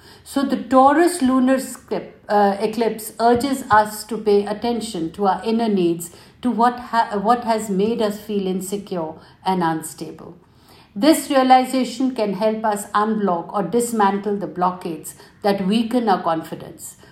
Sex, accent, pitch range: female, Indian, 190-240 Hz